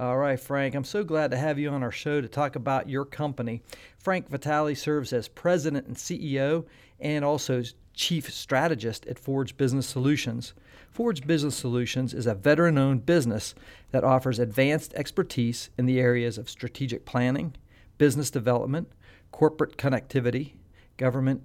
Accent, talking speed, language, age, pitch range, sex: American, 155 wpm, English, 50-69, 120-150 Hz, male